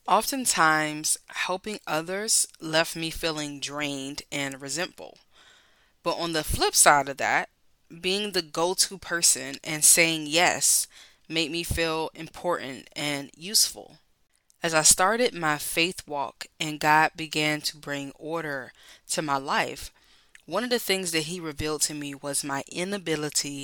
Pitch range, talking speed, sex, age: 150-180 Hz, 140 wpm, female, 20-39